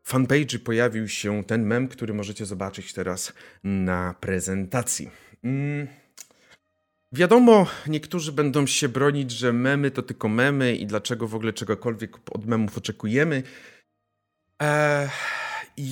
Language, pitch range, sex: Polish, 105-135 Hz, male